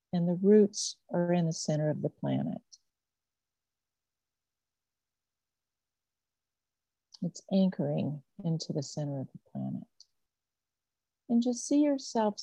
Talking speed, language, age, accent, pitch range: 105 wpm, English, 50-69, American, 165-215 Hz